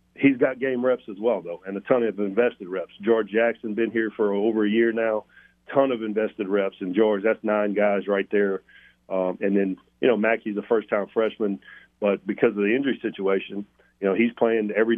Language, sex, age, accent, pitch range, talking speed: English, male, 40-59, American, 100-115 Hz, 215 wpm